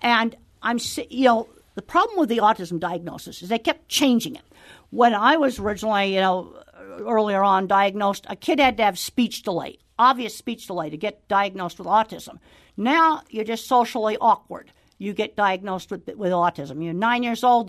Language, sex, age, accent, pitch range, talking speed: English, female, 50-69, American, 205-255 Hz, 185 wpm